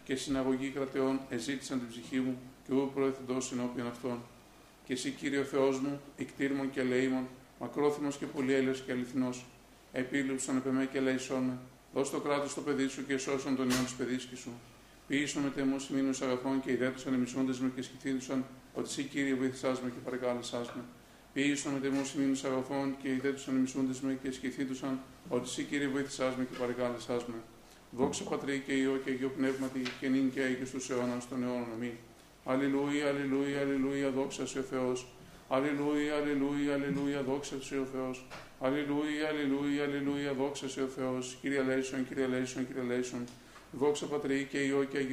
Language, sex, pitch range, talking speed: Greek, male, 130-140 Hz, 145 wpm